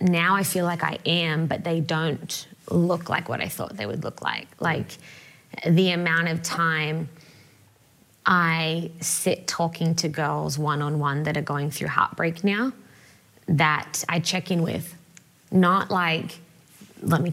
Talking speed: 150 wpm